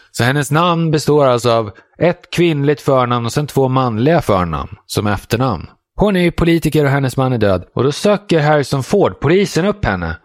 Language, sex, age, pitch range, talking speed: Swedish, male, 20-39, 105-165 Hz, 195 wpm